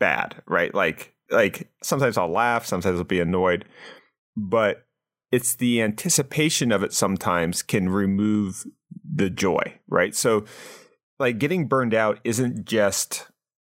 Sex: male